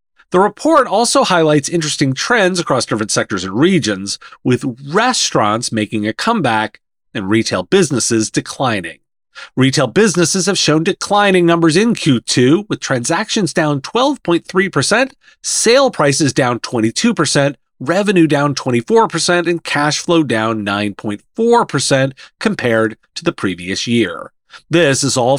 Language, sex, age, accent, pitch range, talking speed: English, male, 30-49, American, 125-190 Hz, 125 wpm